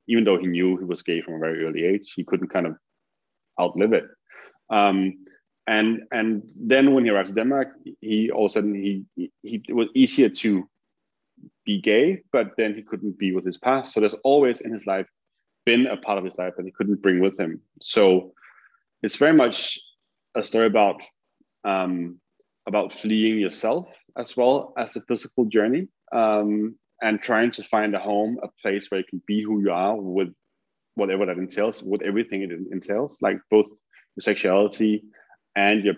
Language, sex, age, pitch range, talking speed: English, male, 20-39, 95-110 Hz, 190 wpm